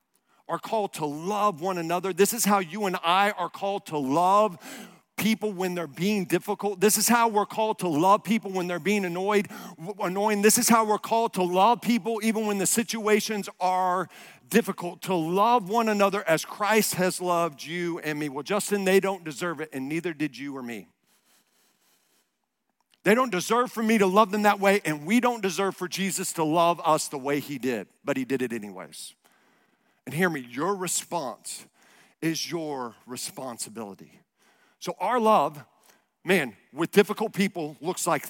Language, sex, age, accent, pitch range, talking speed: English, male, 50-69, American, 160-205 Hz, 180 wpm